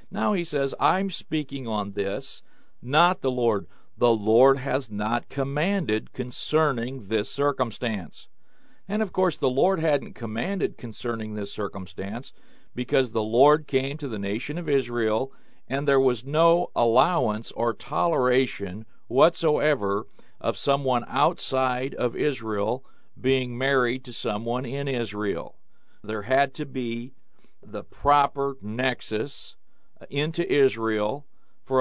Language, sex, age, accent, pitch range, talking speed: English, male, 50-69, American, 110-140 Hz, 125 wpm